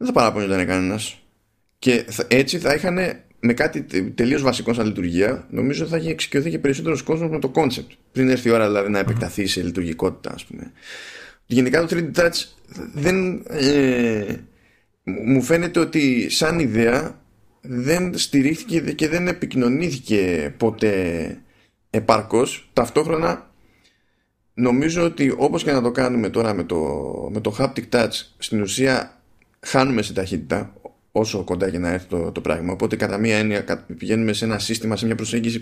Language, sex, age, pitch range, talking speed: Greek, male, 20-39, 105-145 Hz, 160 wpm